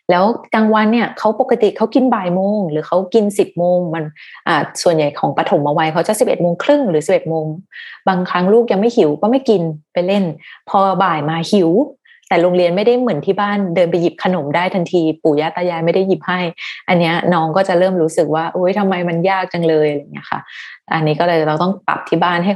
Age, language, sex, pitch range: 20-39, Thai, female, 170-215 Hz